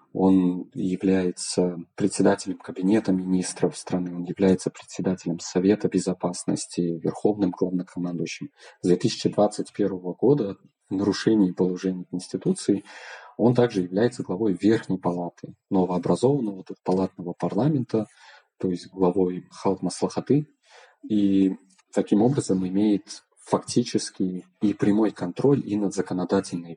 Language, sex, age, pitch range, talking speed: Russian, male, 20-39, 90-100 Hz, 95 wpm